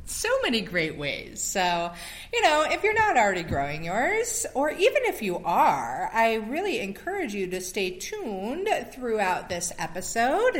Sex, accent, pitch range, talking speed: female, American, 170-255 Hz, 160 wpm